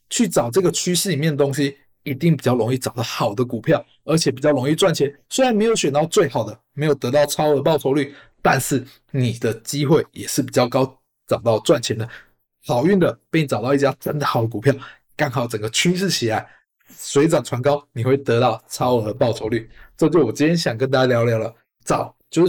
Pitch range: 130-175 Hz